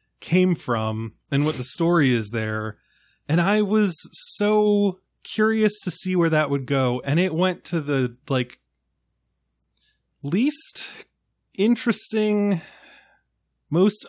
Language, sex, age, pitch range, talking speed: English, male, 20-39, 130-180 Hz, 120 wpm